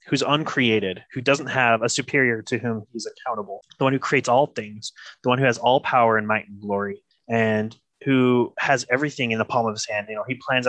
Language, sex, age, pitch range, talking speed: English, male, 20-39, 115-135 Hz, 230 wpm